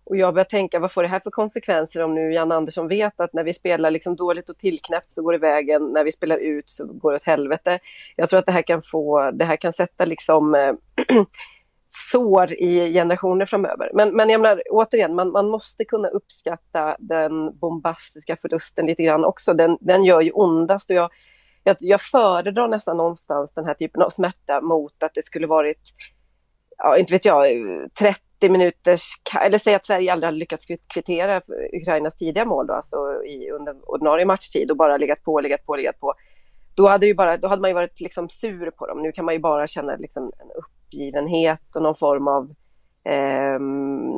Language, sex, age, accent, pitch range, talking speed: Swedish, female, 30-49, native, 155-190 Hz, 200 wpm